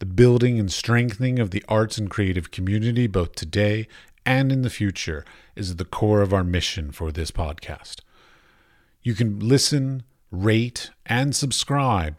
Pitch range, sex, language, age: 85-115 Hz, male, English, 40-59